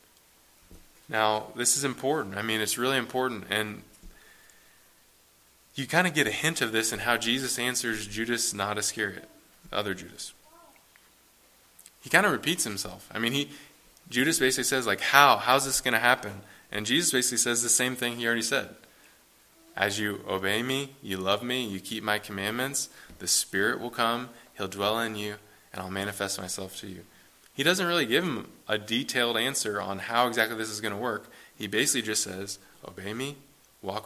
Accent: American